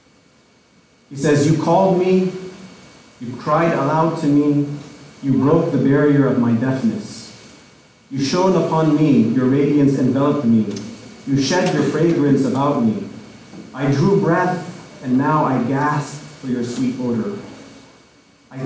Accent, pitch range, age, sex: American, 125-155 Hz, 30-49, male